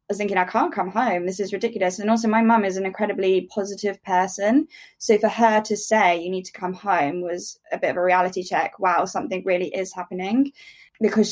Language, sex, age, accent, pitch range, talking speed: English, female, 10-29, British, 185-225 Hz, 210 wpm